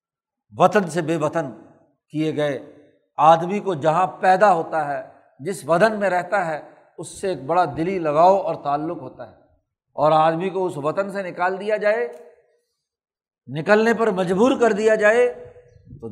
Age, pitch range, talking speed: 60-79, 155-195 Hz, 160 wpm